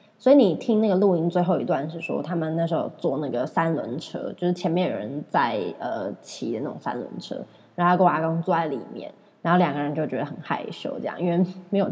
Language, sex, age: Chinese, female, 20-39